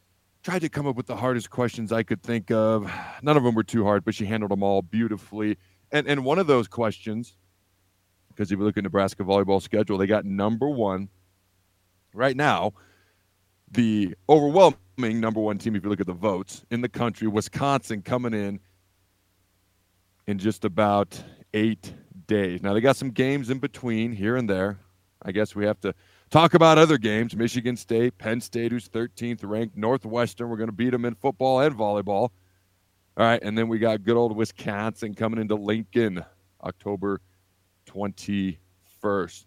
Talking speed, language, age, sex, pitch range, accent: 175 wpm, English, 40-59, male, 95-120 Hz, American